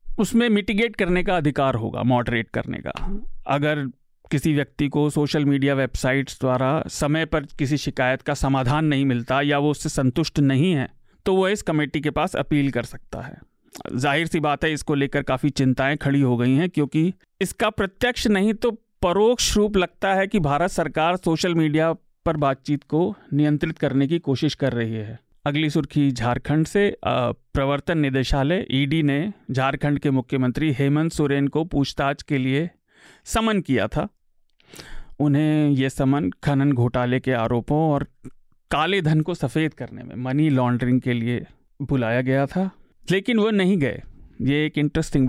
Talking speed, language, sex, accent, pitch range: 165 wpm, Hindi, male, native, 135-160 Hz